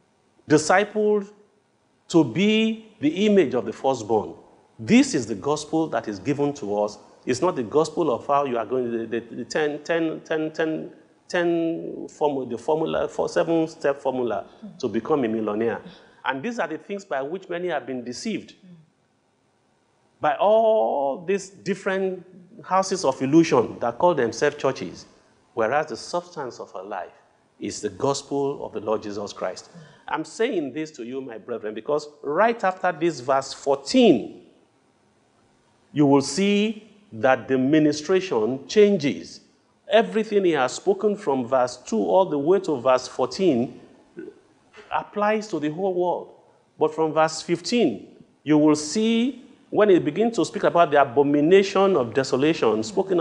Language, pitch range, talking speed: English, 135-195 Hz, 155 wpm